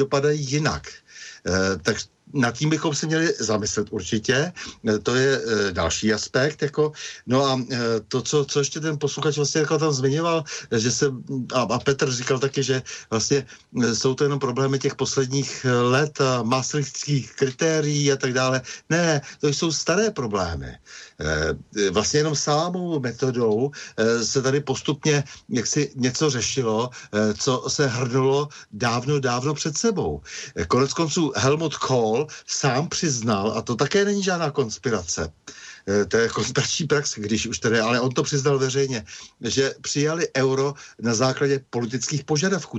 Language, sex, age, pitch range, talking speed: Slovak, male, 60-79, 120-150 Hz, 145 wpm